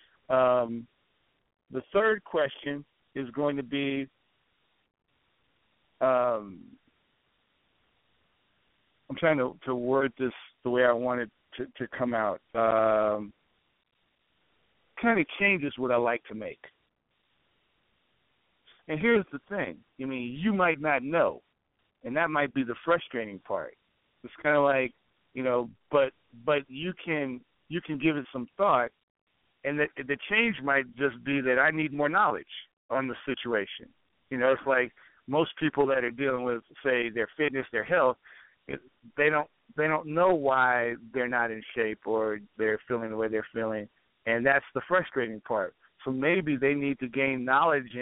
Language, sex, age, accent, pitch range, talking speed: English, male, 50-69, American, 120-145 Hz, 155 wpm